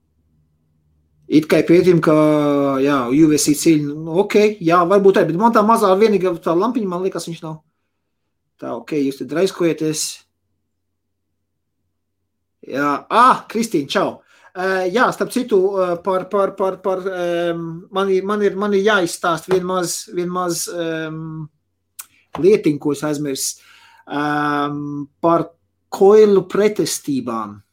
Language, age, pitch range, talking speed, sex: English, 30-49, 145-195 Hz, 120 wpm, male